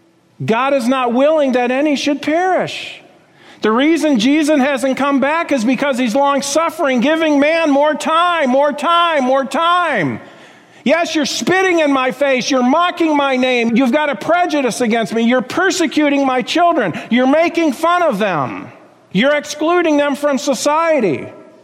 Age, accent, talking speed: 50-69, American, 160 wpm